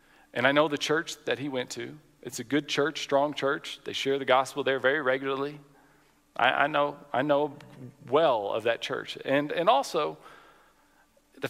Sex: male